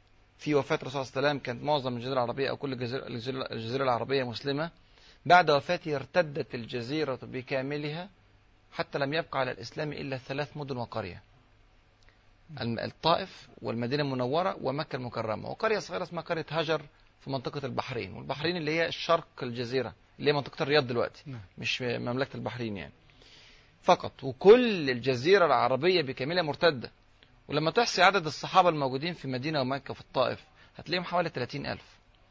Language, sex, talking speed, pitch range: Arabic, male, 135 wpm, 125-160 Hz